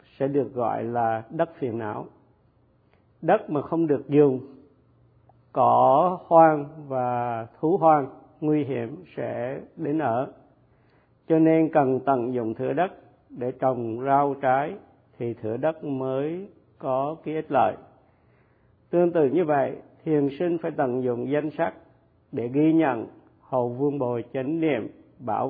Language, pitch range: Vietnamese, 120-150 Hz